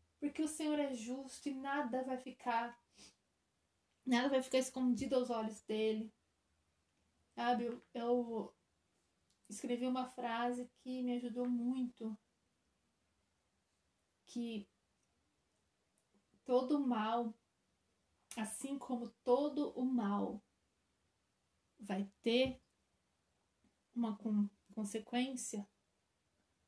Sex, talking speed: female, 85 wpm